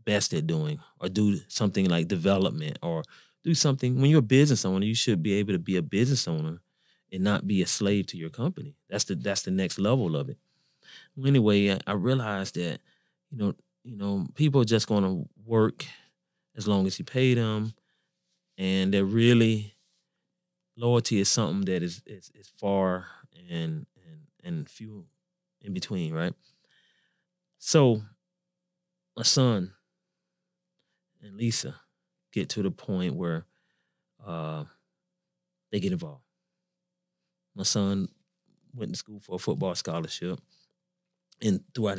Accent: American